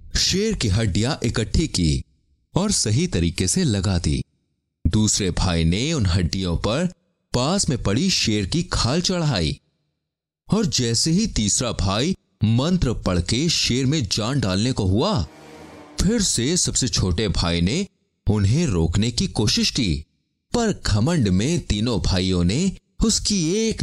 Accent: native